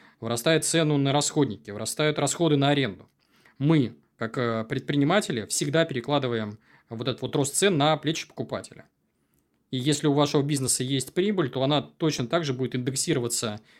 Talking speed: 150 wpm